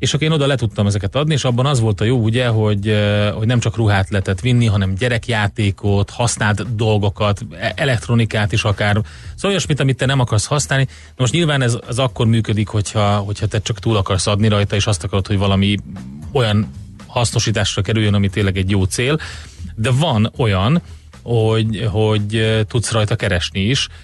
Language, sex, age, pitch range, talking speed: Hungarian, male, 30-49, 105-120 Hz, 180 wpm